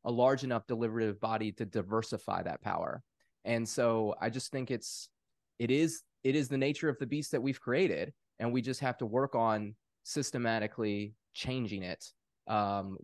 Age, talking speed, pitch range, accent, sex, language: 20-39, 175 wpm, 110-140 Hz, American, male, English